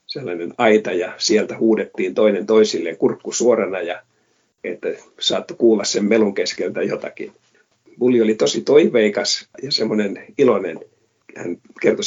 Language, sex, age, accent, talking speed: Finnish, male, 50-69, native, 120 wpm